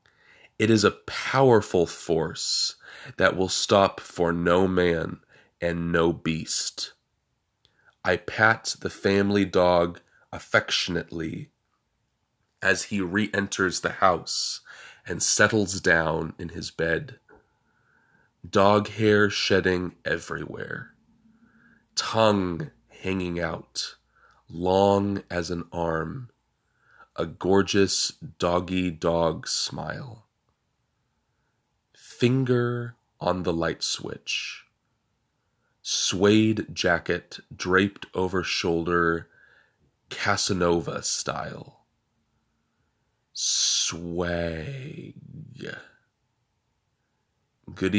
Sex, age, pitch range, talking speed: male, 30-49, 85-115 Hz, 75 wpm